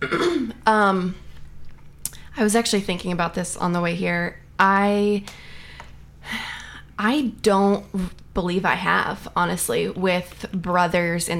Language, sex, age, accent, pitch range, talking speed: English, female, 20-39, American, 165-190 Hz, 110 wpm